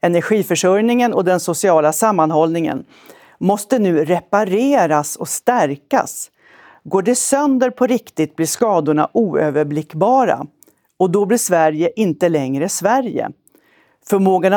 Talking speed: 105 wpm